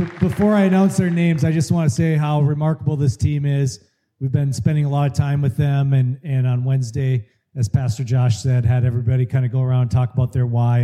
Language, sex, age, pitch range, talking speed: English, male, 30-49, 120-160 Hz, 240 wpm